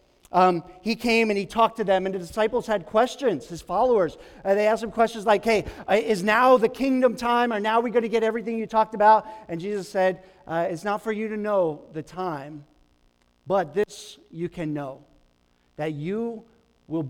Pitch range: 180-230 Hz